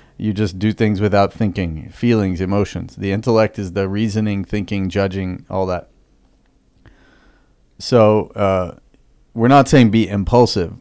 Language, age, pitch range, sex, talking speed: English, 30-49, 95-115 Hz, male, 135 wpm